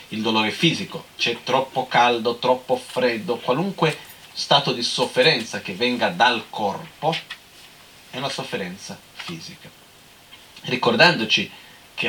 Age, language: 40-59, Italian